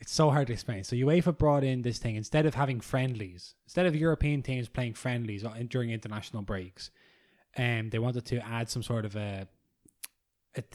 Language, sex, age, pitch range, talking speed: English, male, 20-39, 115-135 Hz, 195 wpm